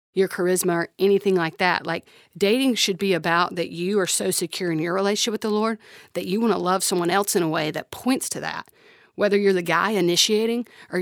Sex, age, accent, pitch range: female, 40-59, American, 170-200 Hz